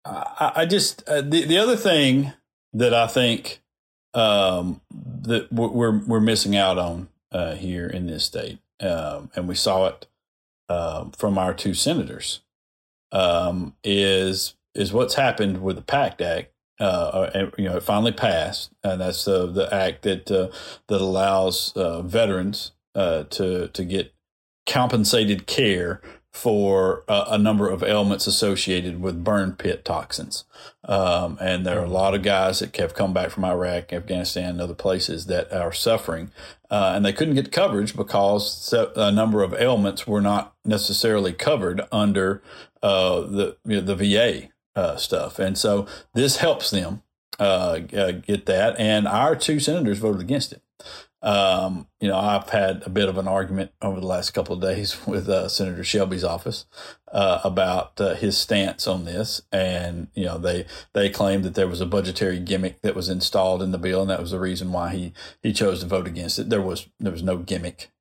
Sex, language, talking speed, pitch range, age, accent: male, English, 175 wpm, 90-105 Hz, 40-59, American